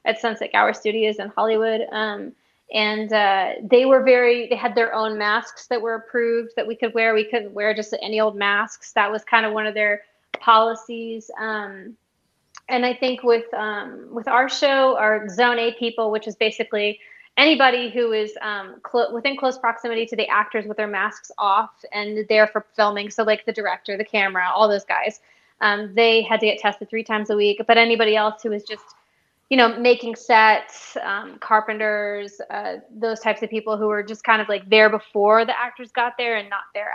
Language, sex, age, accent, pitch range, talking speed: English, female, 20-39, American, 215-240 Hz, 205 wpm